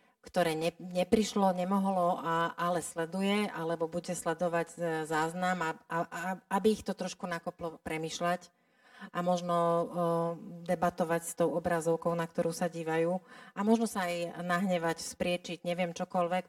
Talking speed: 140 wpm